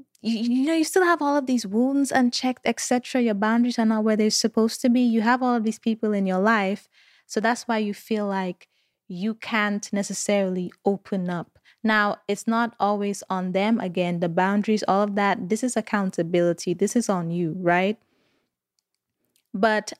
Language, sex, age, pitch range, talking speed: English, female, 20-39, 195-230 Hz, 185 wpm